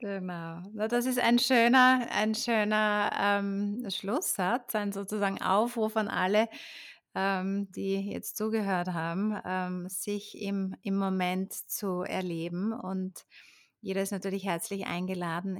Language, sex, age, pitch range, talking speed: German, female, 30-49, 175-215 Hz, 120 wpm